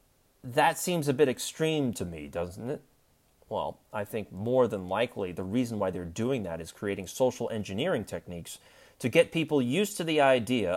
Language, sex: English, male